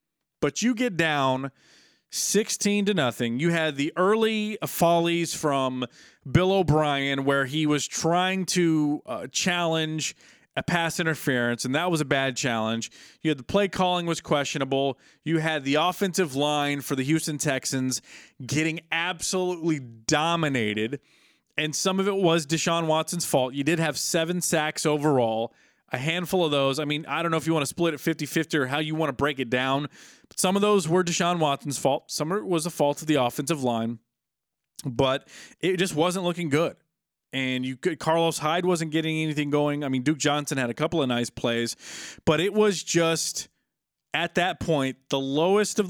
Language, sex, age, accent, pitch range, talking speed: English, male, 30-49, American, 135-170 Hz, 185 wpm